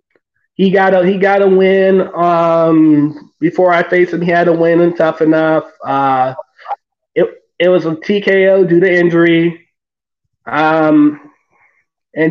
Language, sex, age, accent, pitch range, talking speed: English, male, 20-39, American, 170-200 Hz, 135 wpm